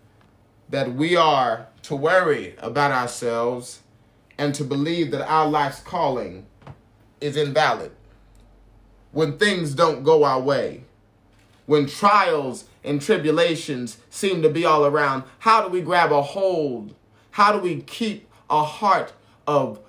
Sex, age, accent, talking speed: male, 30-49, American, 135 wpm